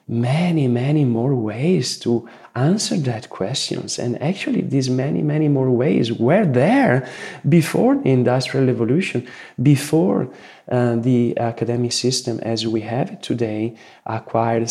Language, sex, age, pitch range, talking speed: English, male, 30-49, 110-140 Hz, 130 wpm